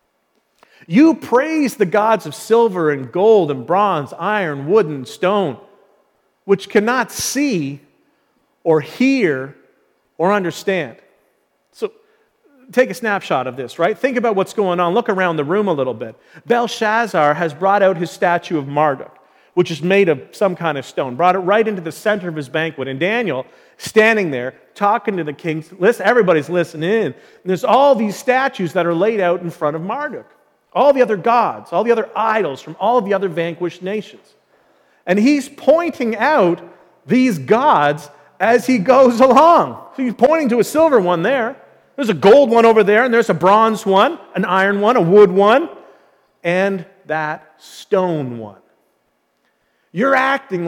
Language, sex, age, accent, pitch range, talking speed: English, male, 40-59, American, 170-235 Hz, 170 wpm